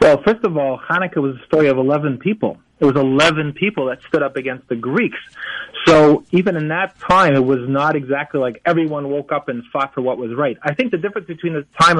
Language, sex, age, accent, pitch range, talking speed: English, male, 30-49, American, 145-175 Hz, 235 wpm